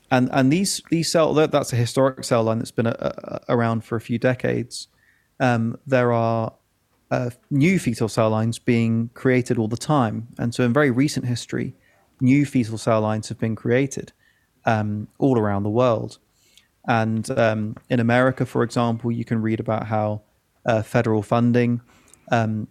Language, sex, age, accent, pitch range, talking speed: English, male, 30-49, British, 110-130 Hz, 170 wpm